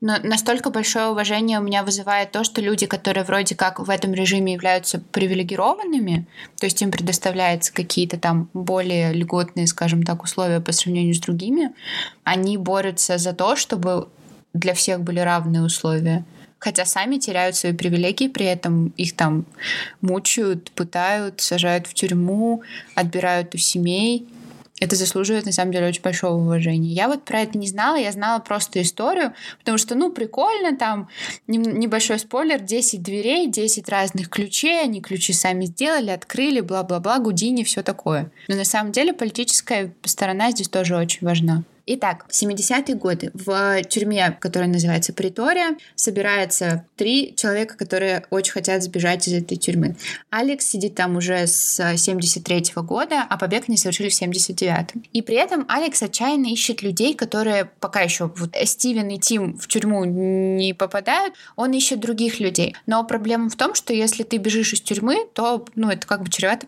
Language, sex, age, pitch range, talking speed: Russian, female, 20-39, 180-225 Hz, 160 wpm